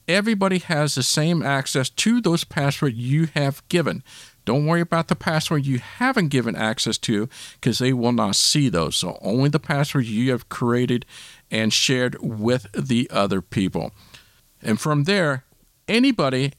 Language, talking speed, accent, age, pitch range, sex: English, 160 wpm, American, 50-69, 110-155 Hz, male